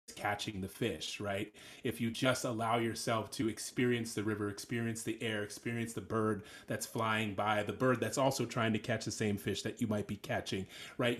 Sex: male